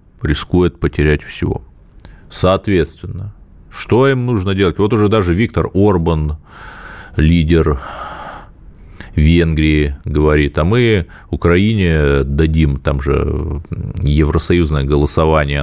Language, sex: Russian, male